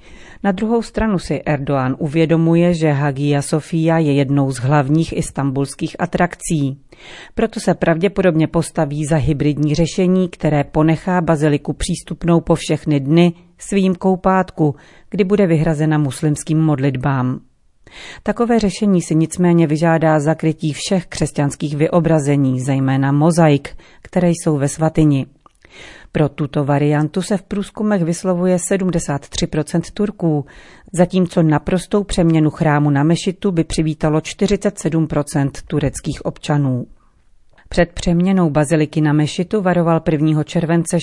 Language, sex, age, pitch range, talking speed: Czech, female, 40-59, 150-175 Hz, 115 wpm